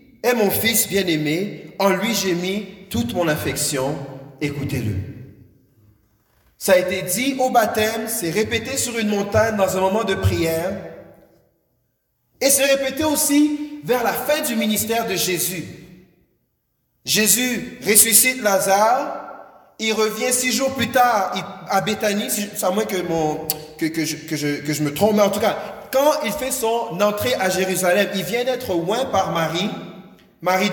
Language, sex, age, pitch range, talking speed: French, male, 40-59, 185-240 Hz, 160 wpm